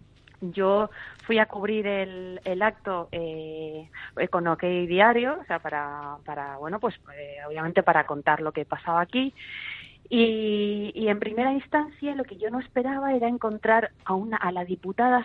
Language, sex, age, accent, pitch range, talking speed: Spanish, female, 30-49, Spanish, 175-225 Hz, 165 wpm